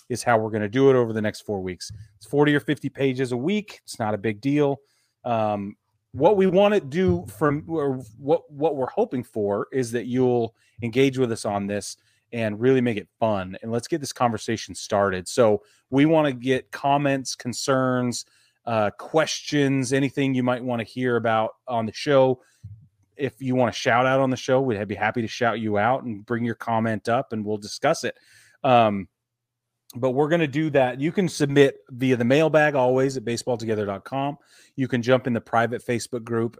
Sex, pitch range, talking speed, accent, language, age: male, 110-130 Hz, 205 wpm, American, English, 30-49